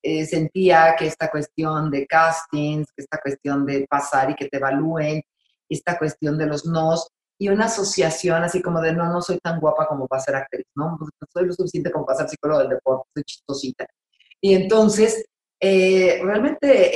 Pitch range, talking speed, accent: 140-175 Hz, 190 wpm, Mexican